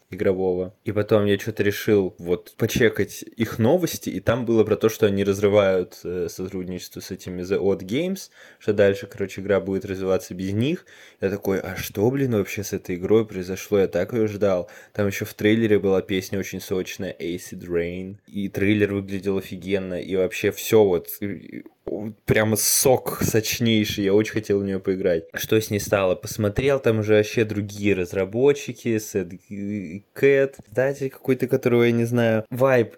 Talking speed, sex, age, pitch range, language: 165 wpm, male, 20-39, 95-115 Hz, Russian